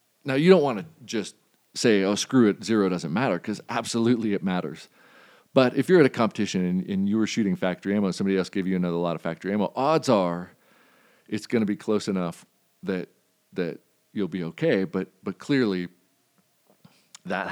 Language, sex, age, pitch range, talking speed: English, male, 40-59, 85-110 Hz, 195 wpm